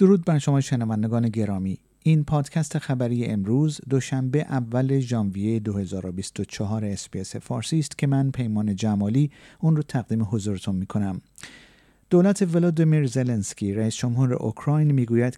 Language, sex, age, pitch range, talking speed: Persian, male, 50-69, 105-145 Hz, 135 wpm